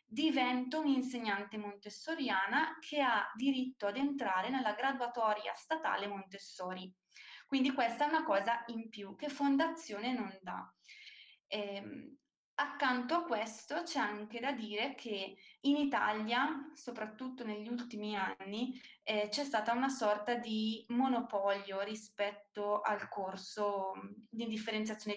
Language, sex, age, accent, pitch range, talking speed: Italian, female, 20-39, native, 210-260 Hz, 115 wpm